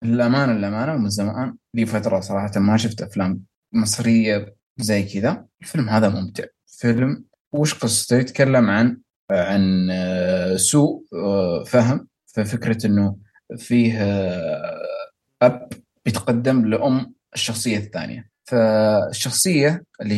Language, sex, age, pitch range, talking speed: Arabic, male, 20-39, 105-135 Hz, 100 wpm